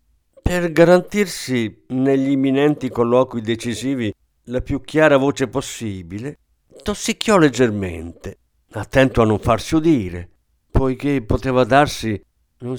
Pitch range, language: 95-135 Hz, Italian